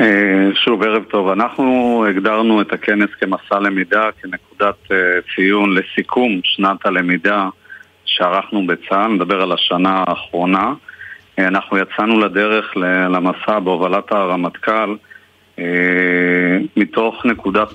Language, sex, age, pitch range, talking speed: Hebrew, male, 40-59, 95-110 Hz, 95 wpm